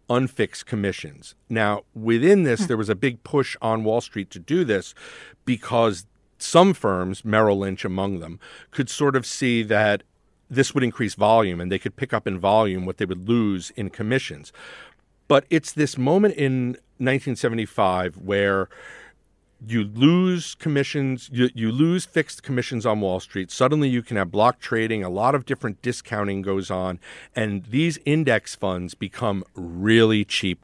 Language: English